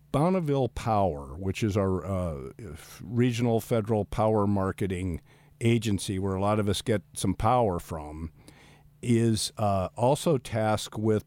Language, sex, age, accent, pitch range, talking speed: English, male, 50-69, American, 100-125 Hz, 135 wpm